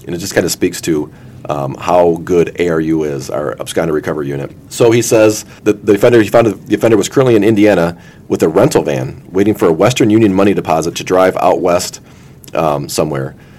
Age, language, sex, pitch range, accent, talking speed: 40-59, English, male, 95-115 Hz, American, 210 wpm